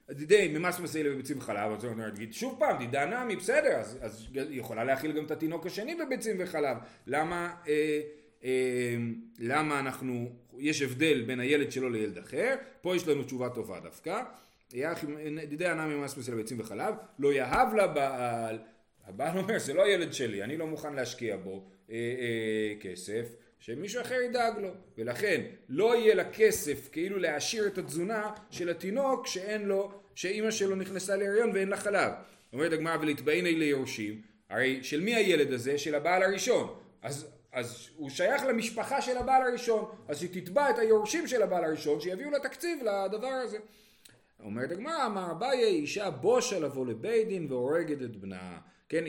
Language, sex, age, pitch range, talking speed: Hebrew, male, 30-49, 125-200 Hz, 160 wpm